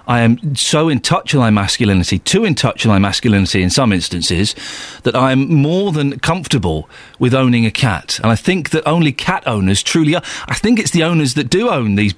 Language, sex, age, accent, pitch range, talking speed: English, male, 40-59, British, 110-165 Hz, 220 wpm